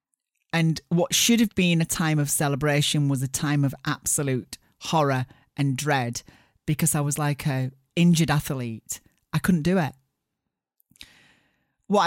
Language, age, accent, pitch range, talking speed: English, 40-59, British, 135-170 Hz, 145 wpm